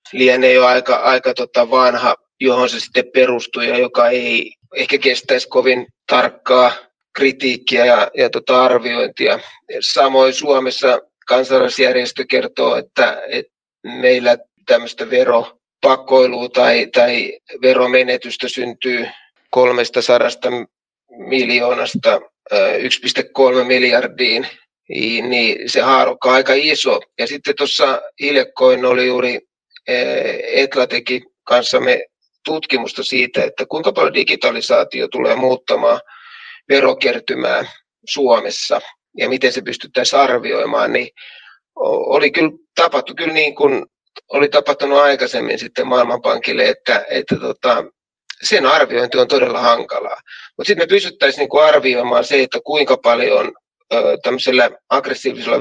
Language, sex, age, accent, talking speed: Finnish, male, 20-39, native, 105 wpm